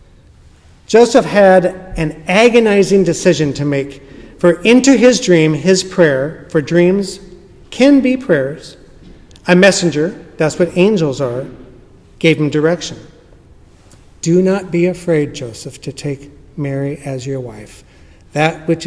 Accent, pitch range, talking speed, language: American, 135-185 Hz, 125 wpm, English